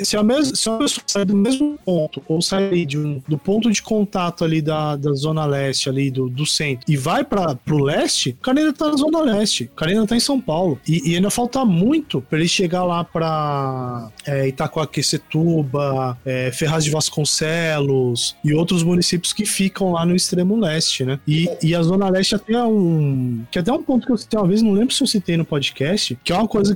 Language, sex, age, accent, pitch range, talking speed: Portuguese, male, 20-39, Brazilian, 150-215 Hz, 220 wpm